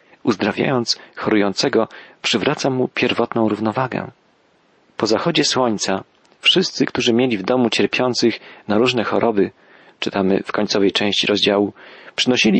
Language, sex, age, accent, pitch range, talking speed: Polish, male, 40-59, native, 105-125 Hz, 115 wpm